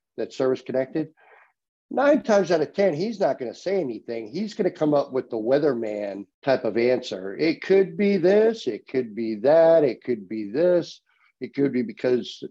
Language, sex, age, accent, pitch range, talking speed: English, male, 50-69, American, 125-165 Hz, 195 wpm